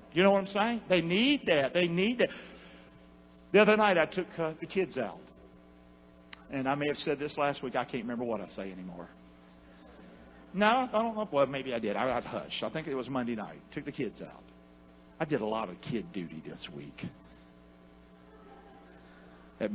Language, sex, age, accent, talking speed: English, male, 50-69, American, 200 wpm